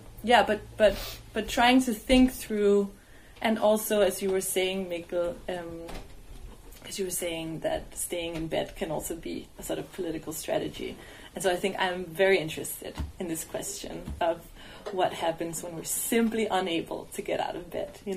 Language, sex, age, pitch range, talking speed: English, female, 20-39, 170-200 Hz, 180 wpm